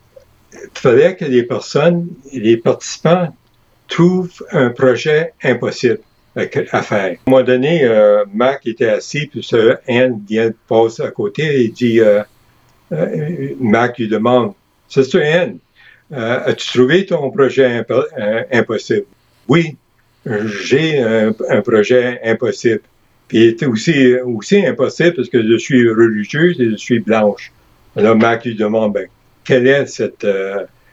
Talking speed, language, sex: 145 wpm, French, male